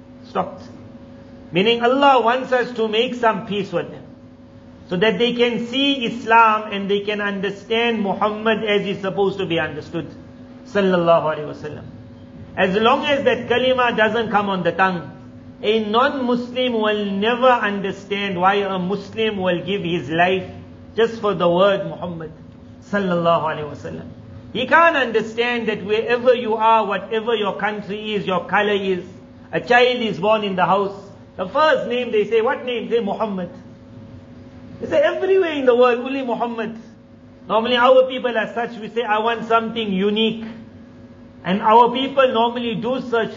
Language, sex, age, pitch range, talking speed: Indonesian, male, 50-69, 190-235 Hz, 160 wpm